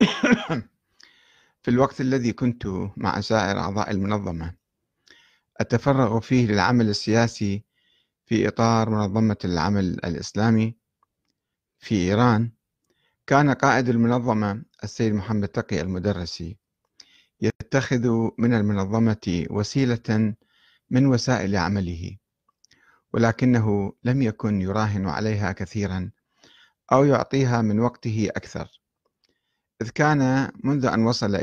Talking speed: 95 wpm